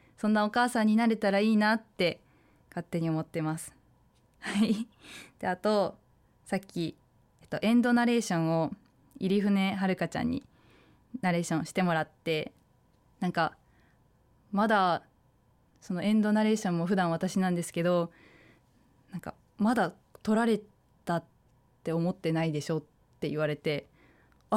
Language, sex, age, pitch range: Japanese, female, 20-39, 165-215 Hz